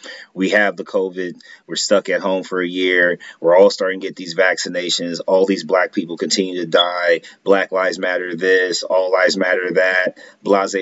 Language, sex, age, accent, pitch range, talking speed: English, male, 30-49, American, 95-115 Hz, 190 wpm